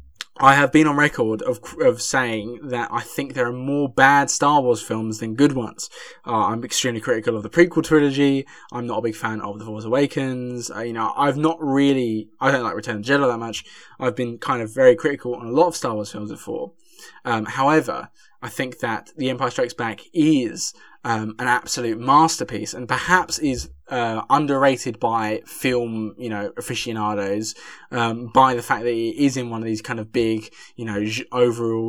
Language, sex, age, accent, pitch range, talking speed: English, male, 20-39, British, 110-140 Hz, 205 wpm